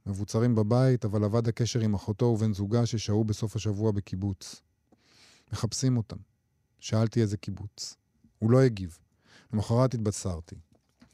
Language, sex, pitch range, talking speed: Hebrew, male, 100-120 Hz, 125 wpm